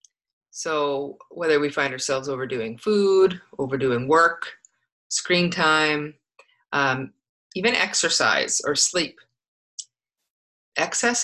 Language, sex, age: English, female, 30-49